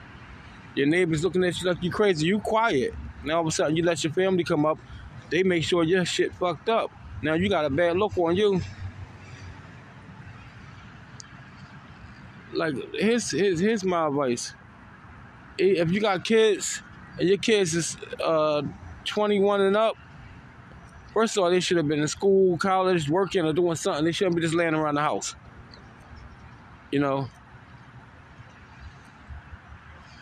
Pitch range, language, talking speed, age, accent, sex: 135-190 Hz, English, 155 wpm, 20-39, American, male